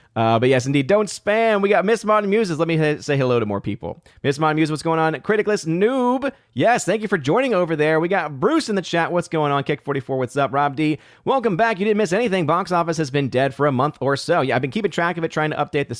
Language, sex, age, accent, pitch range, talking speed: English, male, 30-49, American, 115-155 Hz, 285 wpm